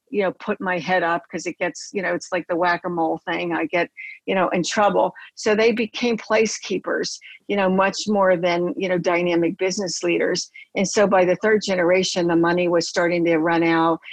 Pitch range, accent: 175-200 Hz, American